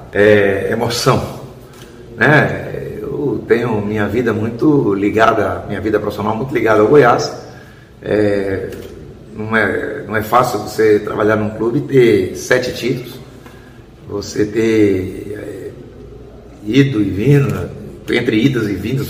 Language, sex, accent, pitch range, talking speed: Portuguese, male, Brazilian, 105-130 Hz, 115 wpm